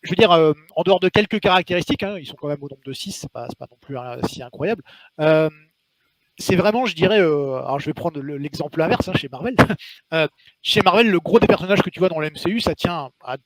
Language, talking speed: French, 250 wpm